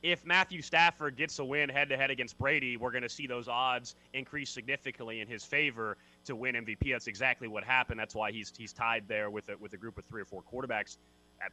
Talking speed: 230 wpm